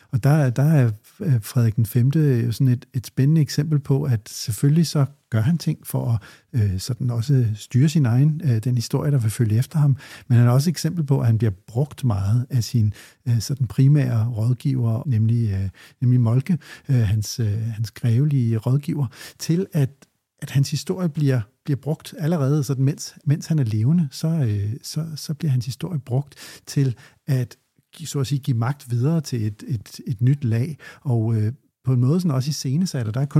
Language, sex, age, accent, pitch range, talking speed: Danish, male, 60-79, native, 120-145 Hz, 180 wpm